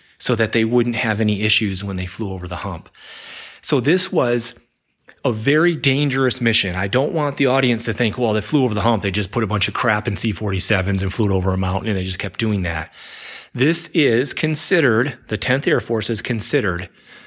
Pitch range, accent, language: 105-130 Hz, American, English